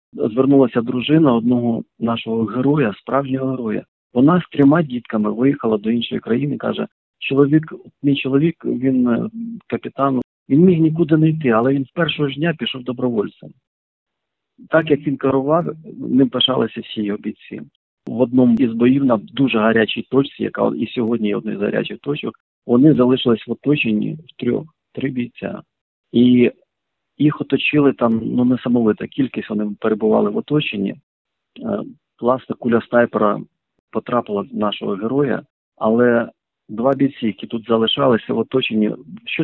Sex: male